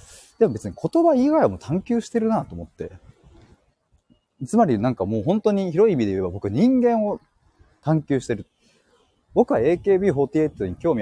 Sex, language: male, Japanese